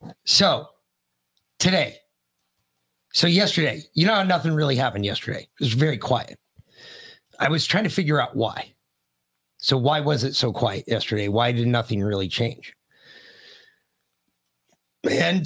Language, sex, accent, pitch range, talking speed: English, male, American, 105-150 Hz, 130 wpm